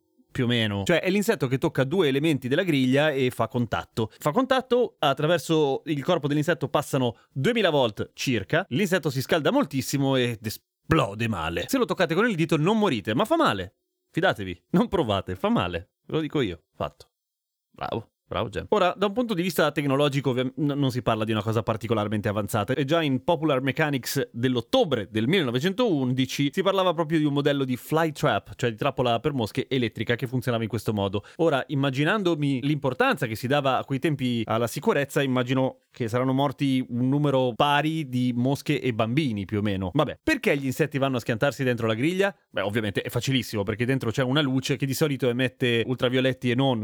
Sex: male